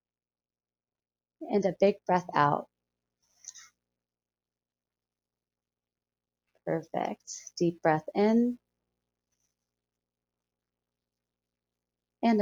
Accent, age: American, 30-49